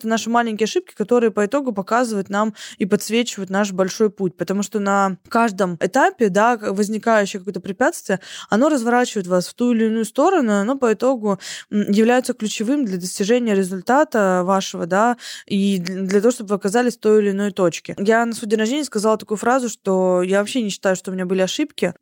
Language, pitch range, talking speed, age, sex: Russian, 200-235 Hz, 190 wpm, 20-39, female